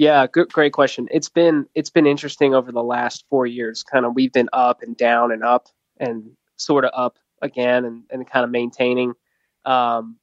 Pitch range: 120-140 Hz